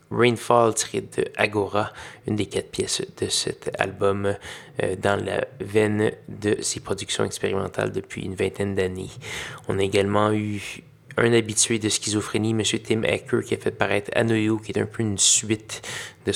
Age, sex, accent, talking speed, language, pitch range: 20-39, male, Canadian, 170 wpm, French, 105-115 Hz